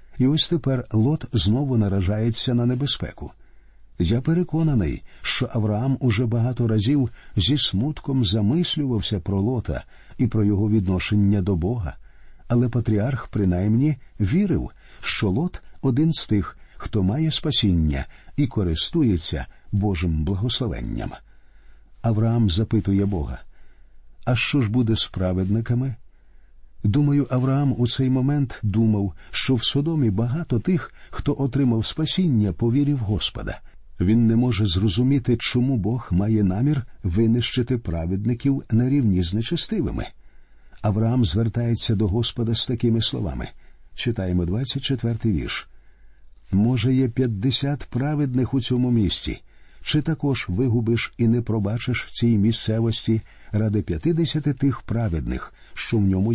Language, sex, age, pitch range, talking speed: Ukrainian, male, 50-69, 100-130 Hz, 120 wpm